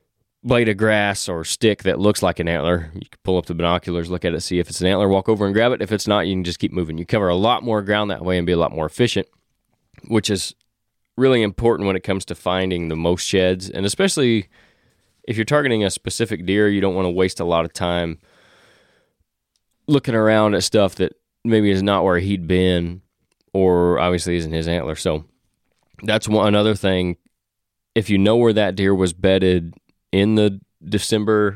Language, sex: English, male